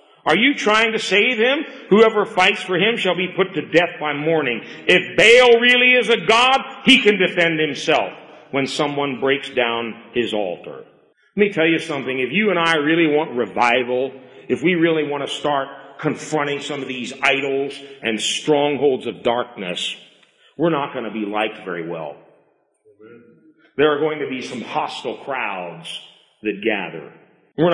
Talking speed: 170 wpm